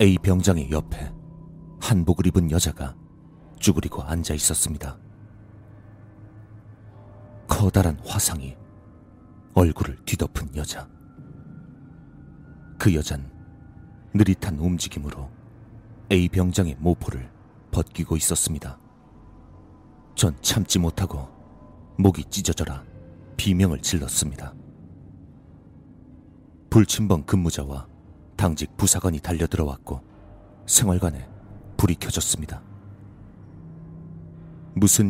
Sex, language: male, Korean